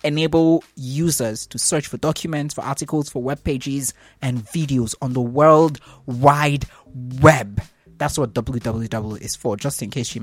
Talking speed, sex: 160 wpm, male